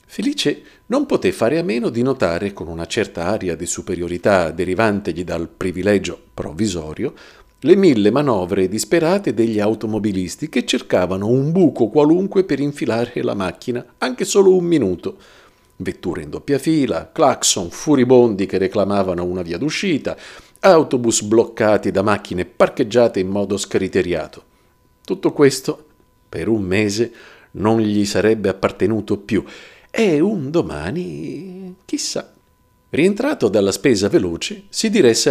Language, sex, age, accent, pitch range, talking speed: Italian, male, 50-69, native, 95-140 Hz, 130 wpm